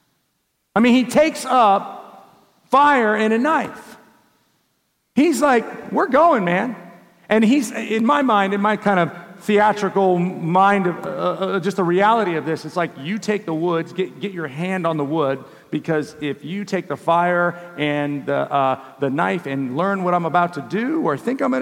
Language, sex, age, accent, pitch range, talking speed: English, male, 40-59, American, 180-235 Hz, 190 wpm